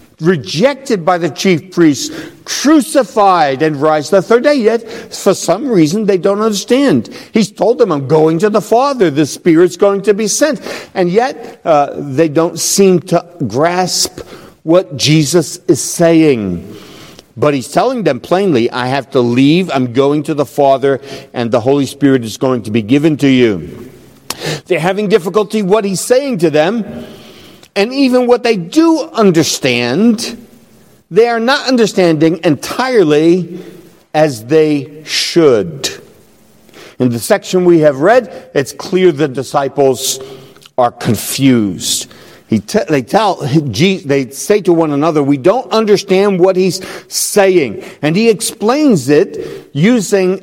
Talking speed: 145 wpm